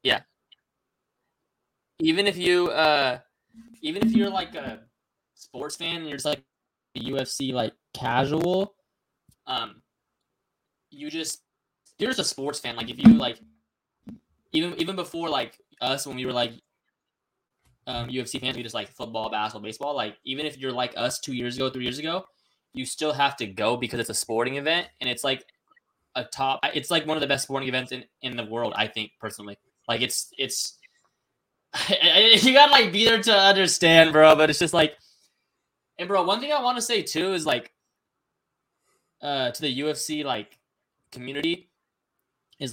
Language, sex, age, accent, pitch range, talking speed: English, male, 10-29, American, 125-175 Hz, 175 wpm